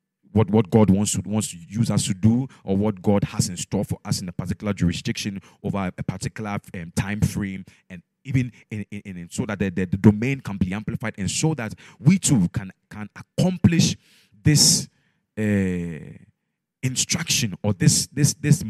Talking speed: 170 wpm